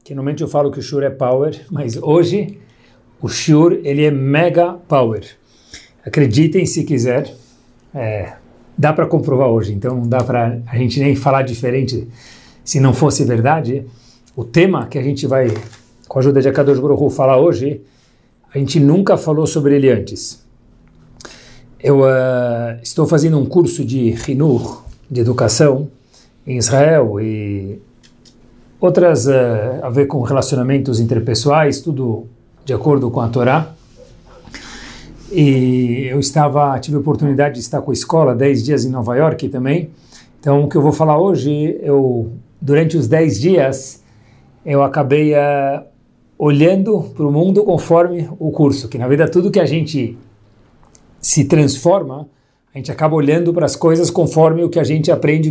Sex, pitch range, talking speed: male, 125-155 Hz, 160 wpm